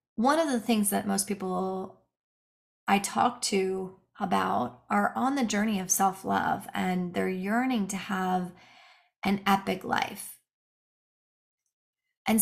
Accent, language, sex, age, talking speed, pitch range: American, English, female, 30-49, 125 wpm, 190-245 Hz